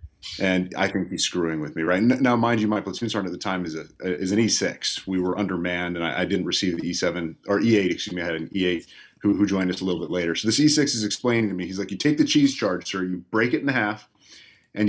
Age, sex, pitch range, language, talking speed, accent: 30-49, male, 90-115 Hz, English, 280 wpm, American